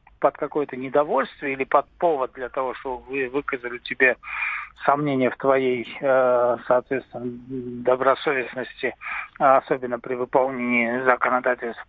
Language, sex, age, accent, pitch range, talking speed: Russian, male, 50-69, native, 130-155 Hz, 105 wpm